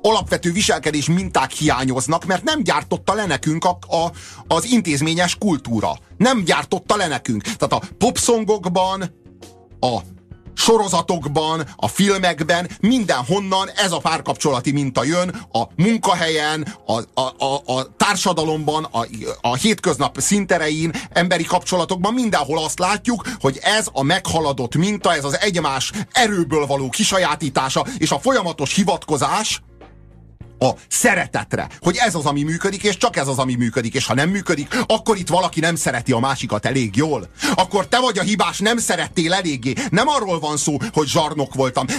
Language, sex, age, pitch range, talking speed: Hungarian, male, 30-49, 145-190 Hz, 145 wpm